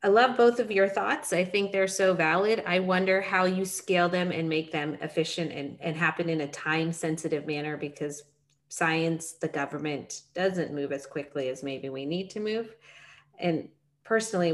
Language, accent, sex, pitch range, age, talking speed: English, American, female, 150-190 Hz, 30-49, 180 wpm